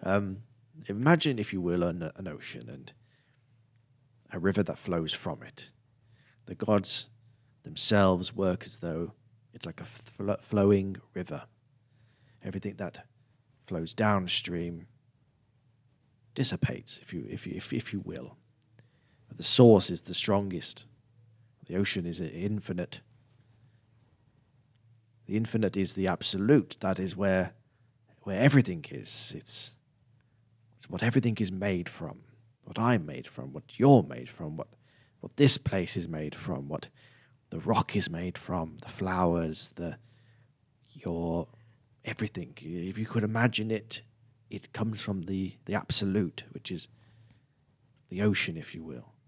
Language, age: English, 40-59